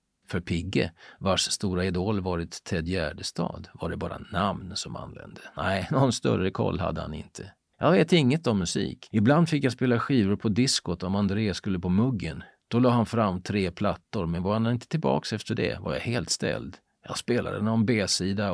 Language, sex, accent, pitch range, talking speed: Swedish, male, native, 90-120 Hz, 190 wpm